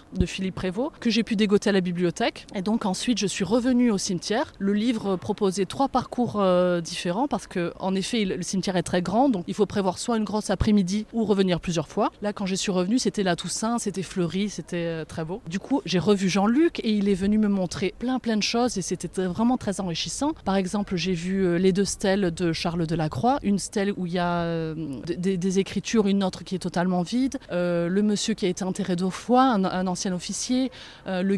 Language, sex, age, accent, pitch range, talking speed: French, female, 20-39, French, 180-210 Hz, 235 wpm